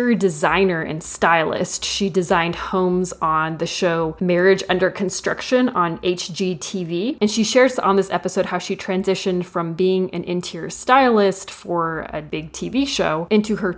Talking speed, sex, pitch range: 150 wpm, female, 170-200 Hz